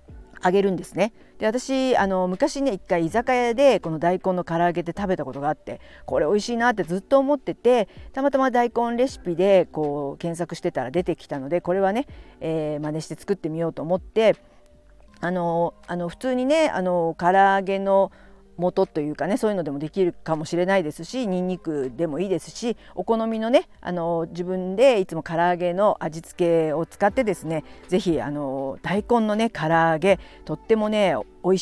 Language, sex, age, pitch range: Japanese, female, 50-69, 160-205 Hz